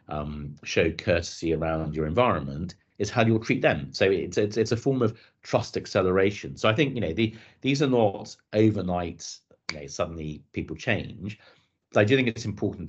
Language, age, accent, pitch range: English, 40-59, British, 90-105 Hz